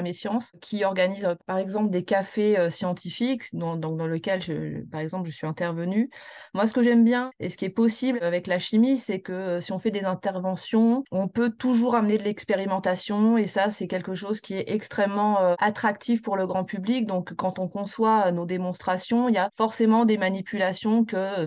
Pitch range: 180-215 Hz